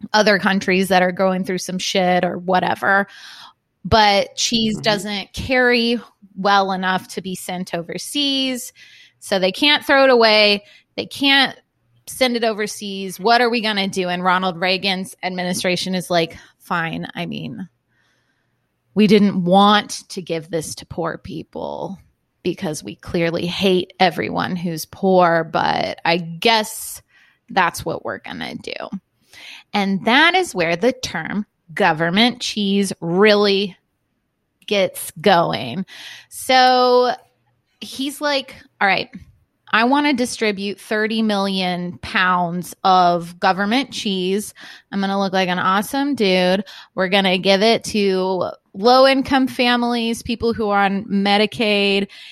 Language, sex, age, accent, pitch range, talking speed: English, female, 20-39, American, 185-225 Hz, 135 wpm